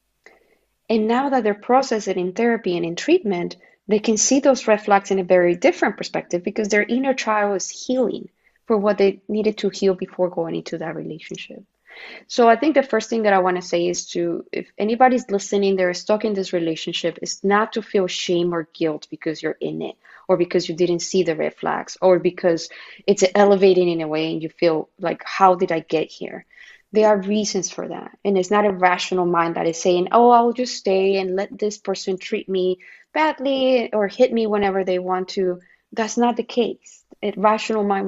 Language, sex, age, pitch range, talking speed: English, female, 20-39, 180-220 Hz, 210 wpm